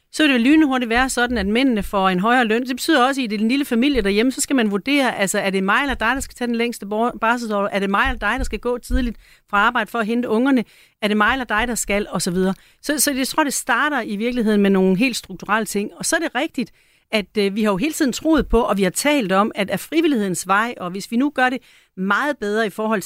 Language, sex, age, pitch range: Danish, female, 40-59, 190-245 Hz